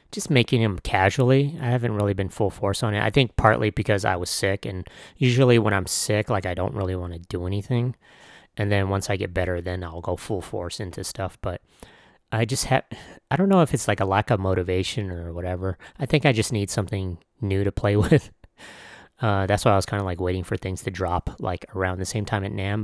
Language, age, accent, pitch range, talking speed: English, 30-49, American, 95-110 Hz, 240 wpm